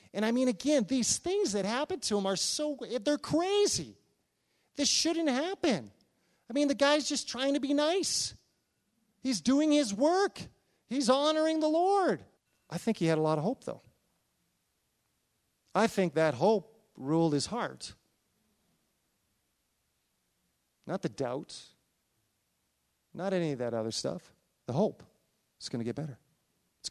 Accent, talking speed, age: American, 150 wpm, 40-59